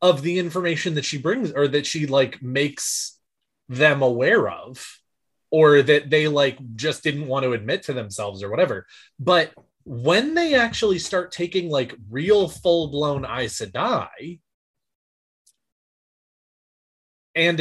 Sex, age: male, 20-39